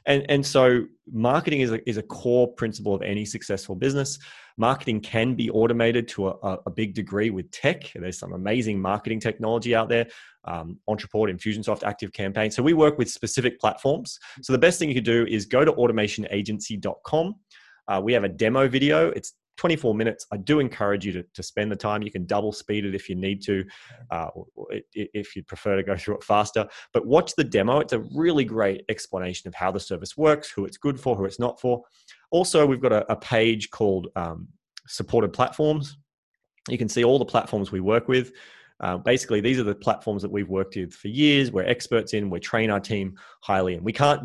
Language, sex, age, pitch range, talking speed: English, male, 20-39, 100-125 Hz, 205 wpm